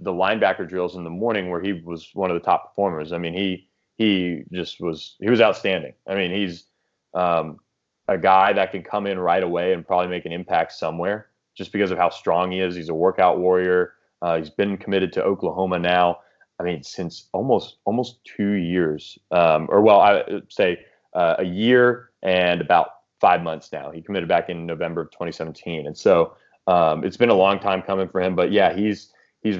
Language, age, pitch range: English, 20-39, 90-100 Hz